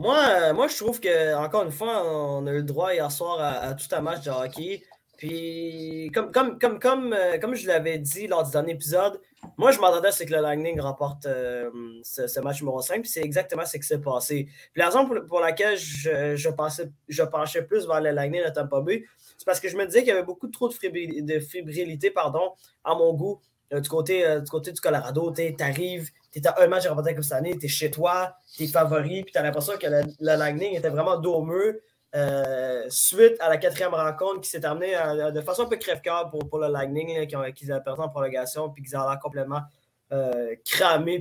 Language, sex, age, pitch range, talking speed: French, male, 20-39, 145-185 Hz, 230 wpm